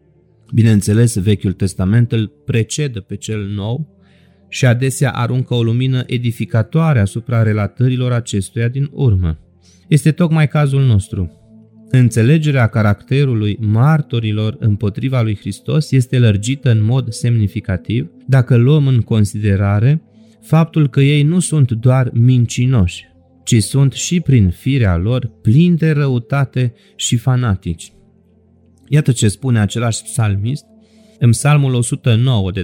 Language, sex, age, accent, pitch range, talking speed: Romanian, male, 30-49, native, 110-130 Hz, 120 wpm